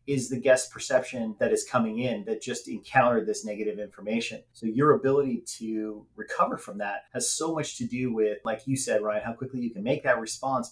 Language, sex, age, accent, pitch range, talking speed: English, male, 30-49, American, 115-190 Hz, 215 wpm